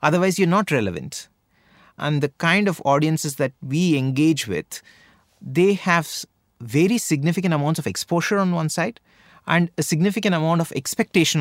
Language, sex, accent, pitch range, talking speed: English, male, Indian, 125-180 Hz, 155 wpm